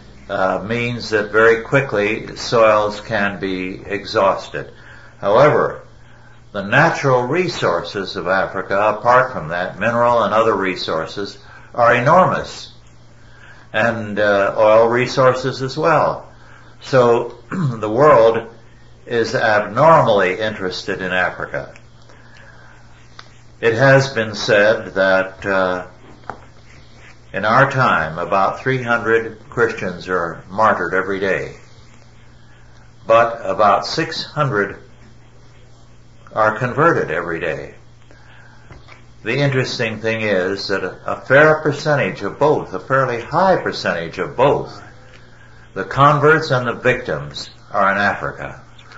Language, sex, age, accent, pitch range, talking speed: English, male, 60-79, American, 100-125 Hz, 105 wpm